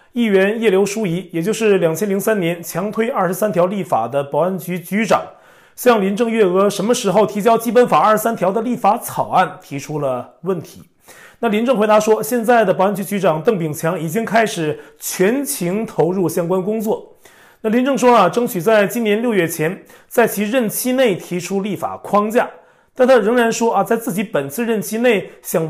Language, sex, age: Chinese, male, 30-49